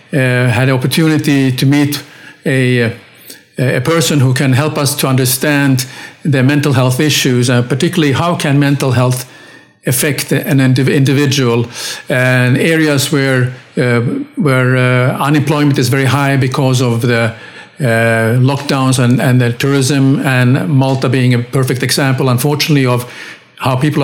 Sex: male